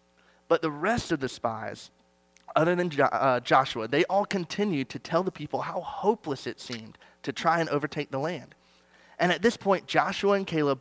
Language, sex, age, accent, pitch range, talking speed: English, male, 30-49, American, 120-180 Hz, 185 wpm